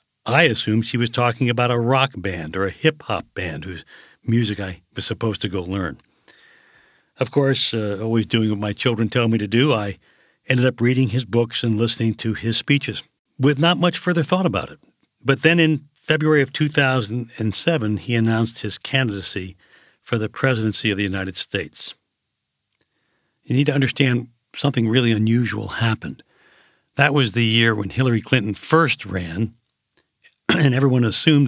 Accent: American